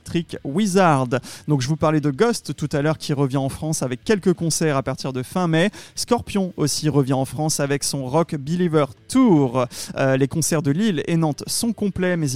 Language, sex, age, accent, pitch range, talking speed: French, male, 30-49, French, 135-185 Hz, 205 wpm